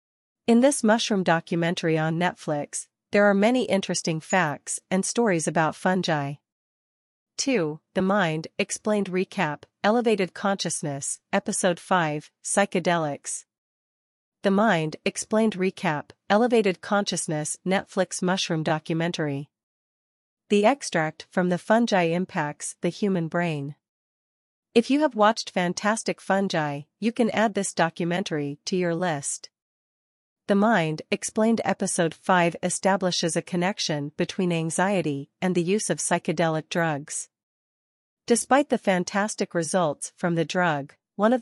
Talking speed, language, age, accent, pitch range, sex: 120 wpm, English, 40-59, American, 165-200 Hz, female